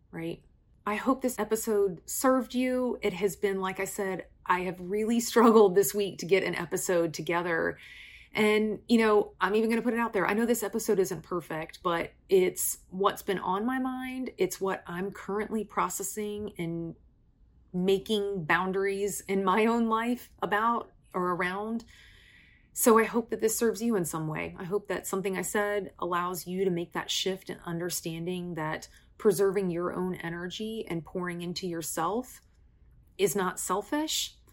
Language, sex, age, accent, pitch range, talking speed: English, female, 30-49, American, 180-215 Hz, 170 wpm